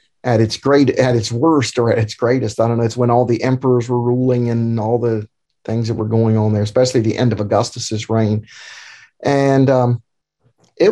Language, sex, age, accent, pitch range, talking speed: English, male, 50-69, American, 120-160 Hz, 210 wpm